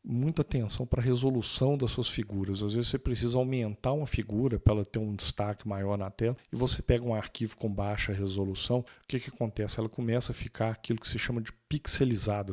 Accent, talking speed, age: Brazilian, 215 wpm, 50-69